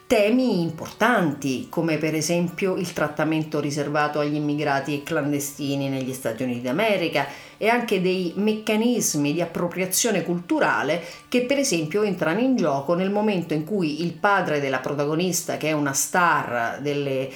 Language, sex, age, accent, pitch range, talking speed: Italian, female, 40-59, native, 150-195 Hz, 145 wpm